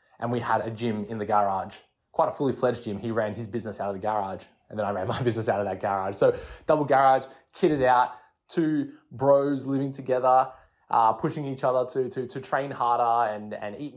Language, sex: English, male